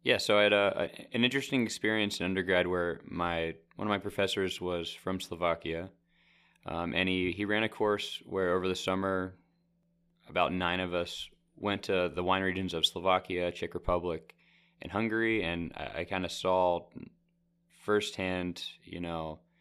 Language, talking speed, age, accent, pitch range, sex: Spanish, 170 wpm, 20-39, American, 85-100 Hz, male